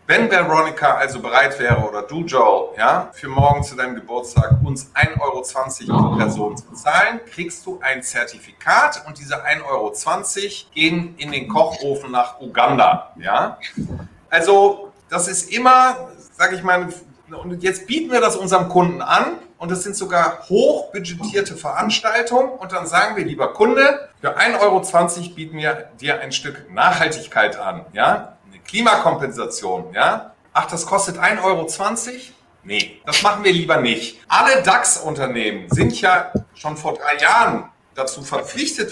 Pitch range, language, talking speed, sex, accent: 135-205 Hz, German, 150 wpm, male, German